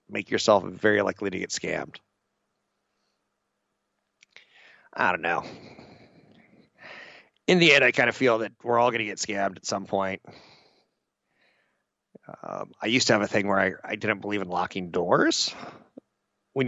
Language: English